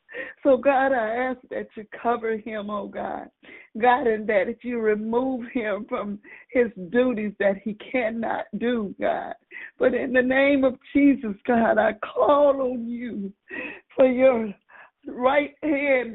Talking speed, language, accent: 150 wpm, English, American